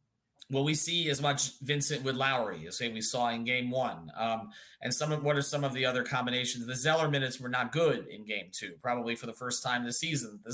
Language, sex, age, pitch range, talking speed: English, male, 30-49, 125-150 Hz, 240 wpm